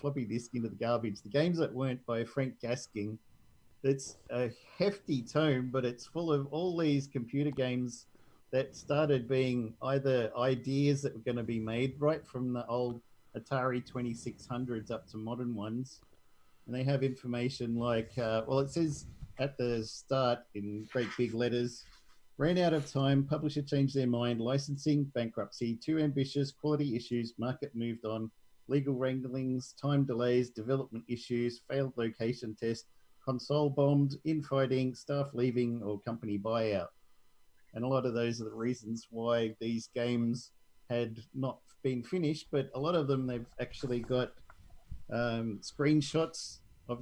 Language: English